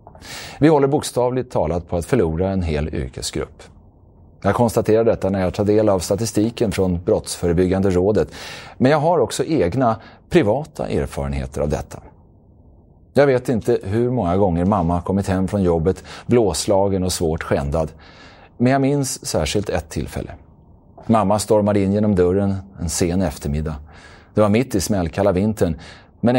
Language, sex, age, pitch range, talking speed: Swedish, male, 30-49, 85-105 Hz, 155 wpm